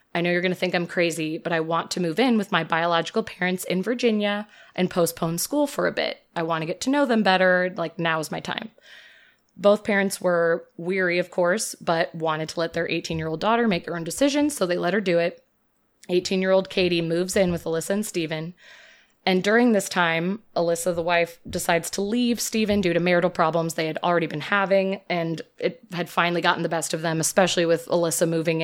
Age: 20-39